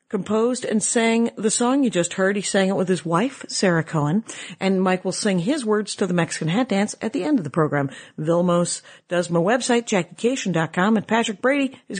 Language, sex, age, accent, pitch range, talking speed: English, female, 50-69, American, 160-205 Hz, 210 wpm